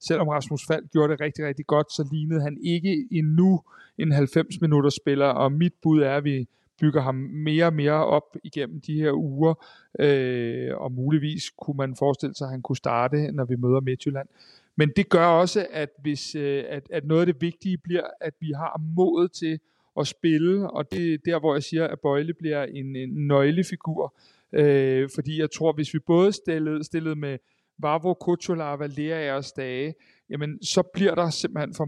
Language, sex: Danish, male